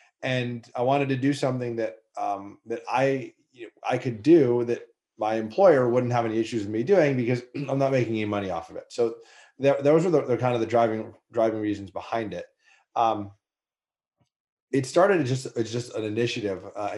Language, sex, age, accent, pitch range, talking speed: English, male, 30-49, American, 105-130 Hz, 195 wpm